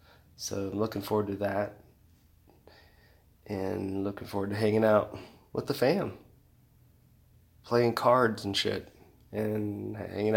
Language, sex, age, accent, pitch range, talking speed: English, male, 20-39, American, 100-110 Hz, 120 wpm